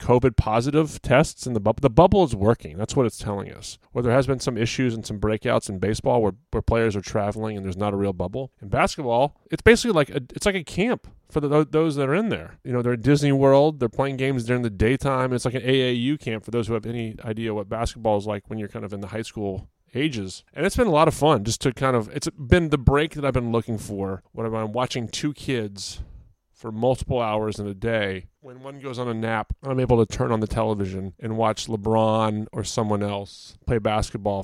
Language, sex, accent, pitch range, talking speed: English, male, American, 105-135 Hz, 240 wpm